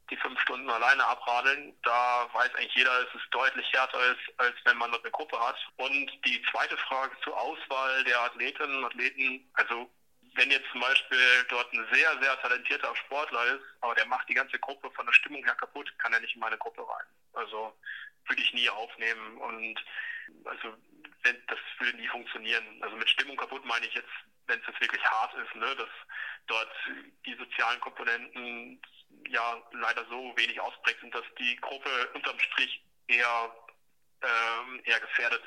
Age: 30-49